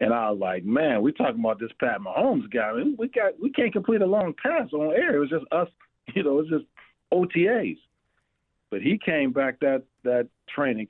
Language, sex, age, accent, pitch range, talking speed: English, male, 40-59, American, 110-130 Hz, 225 wpm